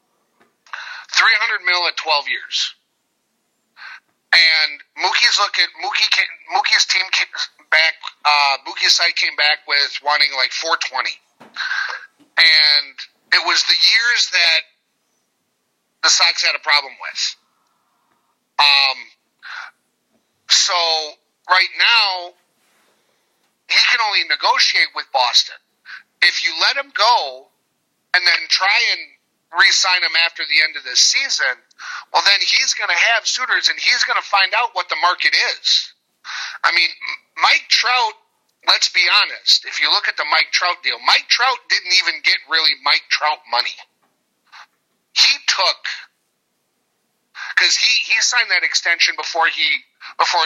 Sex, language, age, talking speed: male, English, 40-59, 135 wpm